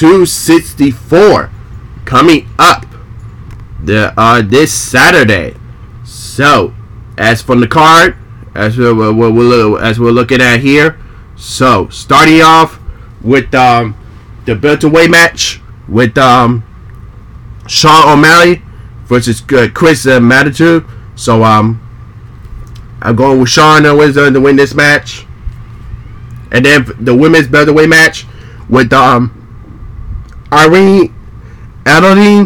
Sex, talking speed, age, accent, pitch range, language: male, 115 wpm, 20-39, American, 115-140 Hz, English